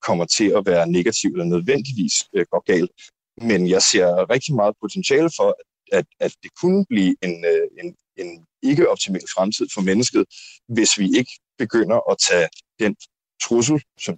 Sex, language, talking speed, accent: male, Danish, 170 wpm, native